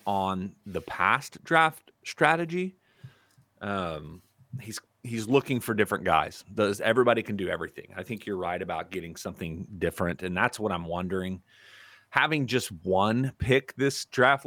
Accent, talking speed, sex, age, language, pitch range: American, 150 wpm, male, 30-49, English, 90-115 Hz